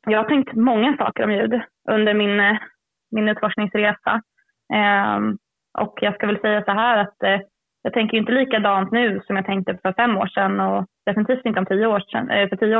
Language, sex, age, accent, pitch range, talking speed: Swedish, female, 20-39, native, 185-210 Hz, 190 wpm